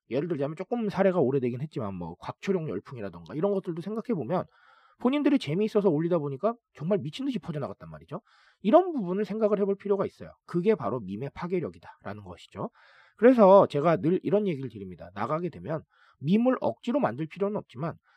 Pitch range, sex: 155-220 Hz, male